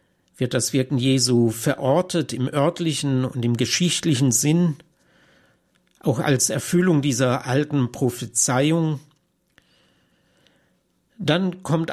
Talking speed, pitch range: 95 wpm, 125-155 Hz